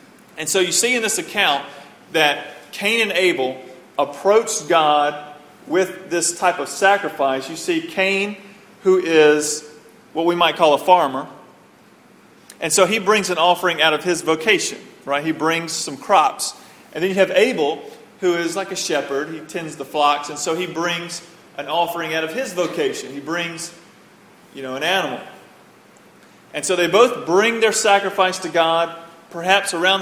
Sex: male